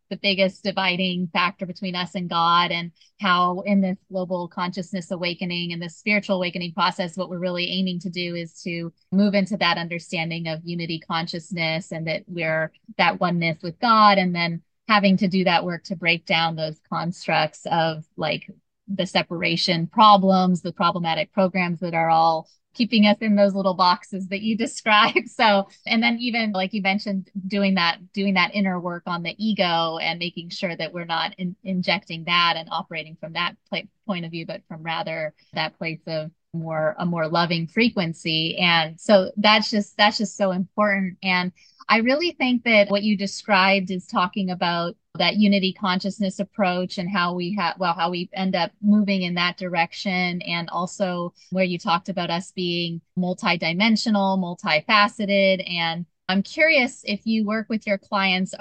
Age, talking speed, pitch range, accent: 30-49, 175 wpm, 170-200 Hz, American